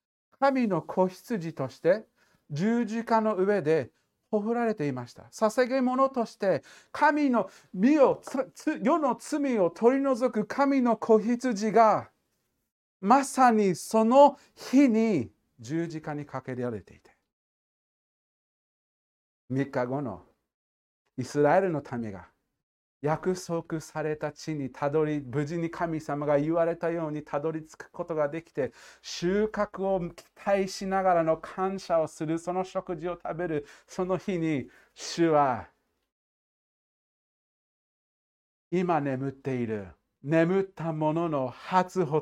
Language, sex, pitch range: Japanese, male, 145-220 Hz